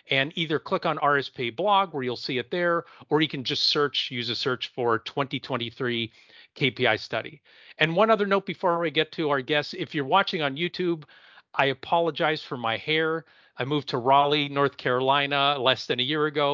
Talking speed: 195 wpm